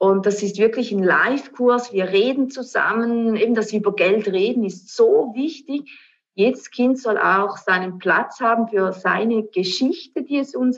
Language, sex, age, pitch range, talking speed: German, female, 30-49, 190-245 Hz, 165 wpm